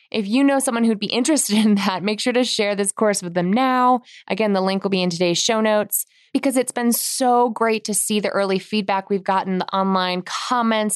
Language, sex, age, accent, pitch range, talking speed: English, female, 20-39, American, 185-245 Hz, 230 wpm